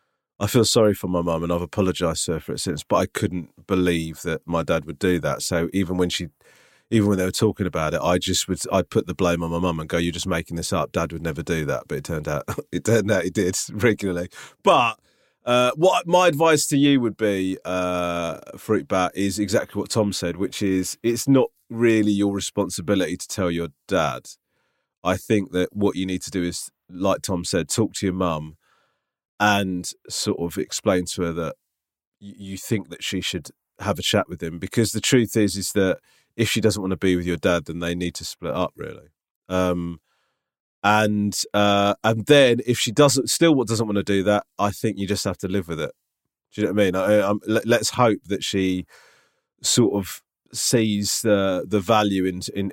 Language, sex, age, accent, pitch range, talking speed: English, male, 30-49, British, 90-110 Hz, 220 wpm